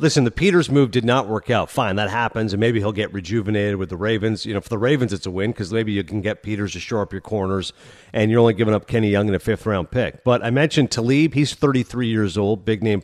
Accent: American